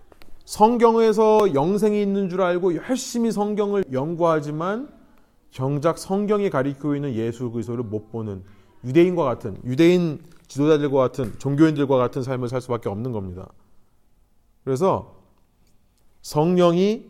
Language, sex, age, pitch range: Korean, male, 30-49, 115-165 Hz